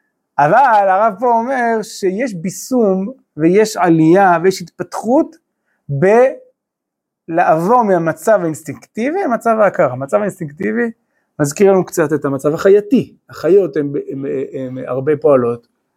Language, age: Hebrew, 30-49